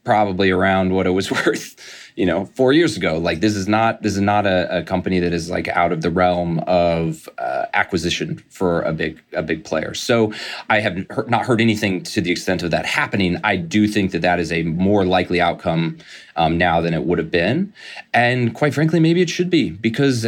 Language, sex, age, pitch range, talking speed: English, male, 30-49, 90-120 Hz, 220 wpm